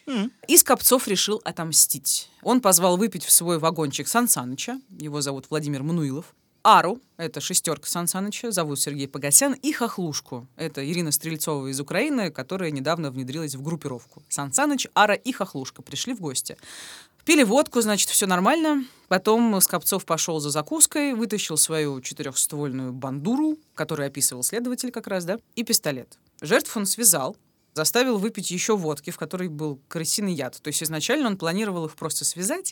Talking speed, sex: 150 wpm, female